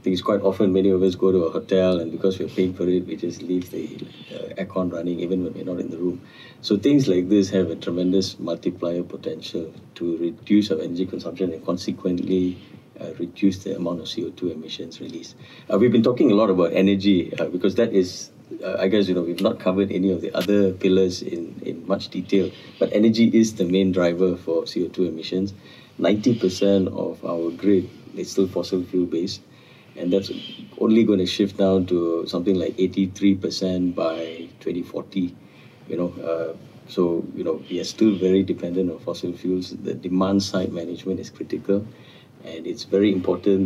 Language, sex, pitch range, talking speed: English, male, 90-100 Hz, 190 wpm